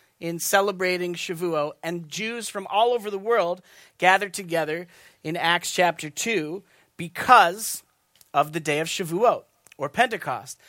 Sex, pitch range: male, 155-190 Hz